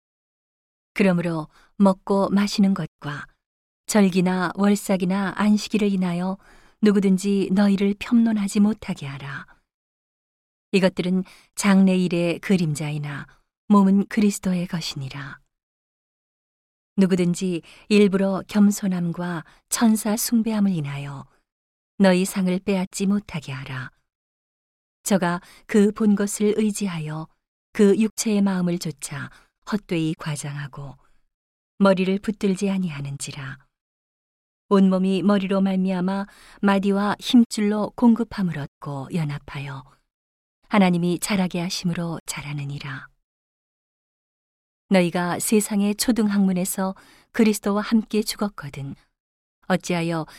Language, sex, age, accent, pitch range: Korean, female, 40-59, native, 170-205 Hz